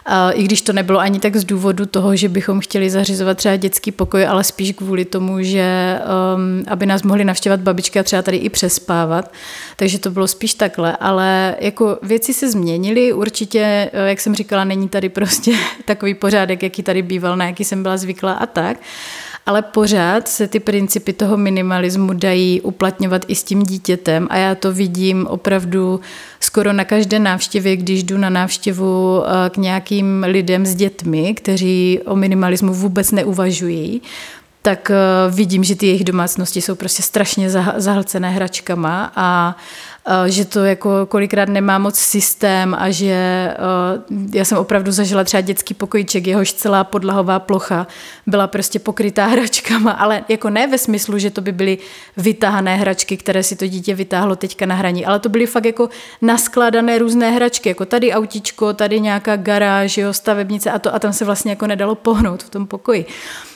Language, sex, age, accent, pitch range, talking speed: Czech, female, 30-49, native, 190-210 Hz, 170 wpm